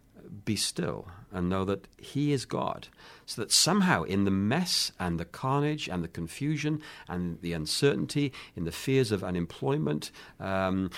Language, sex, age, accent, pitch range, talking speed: English, male, 50-69, British, 90-120 Hz, 160 wpm